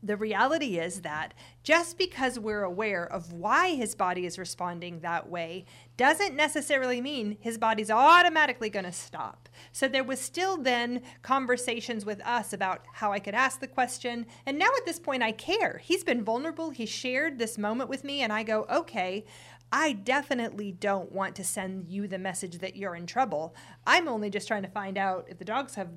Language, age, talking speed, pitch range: English, 40-59, 190 wpm, 185-245 Hz